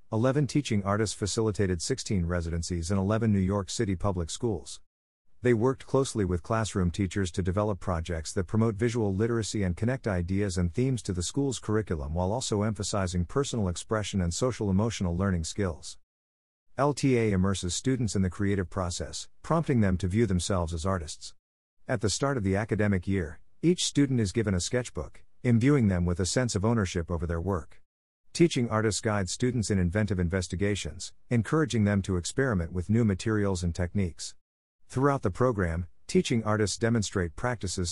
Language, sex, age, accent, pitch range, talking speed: English, male, 50-69, American, 90-115 Hz, 165 wpm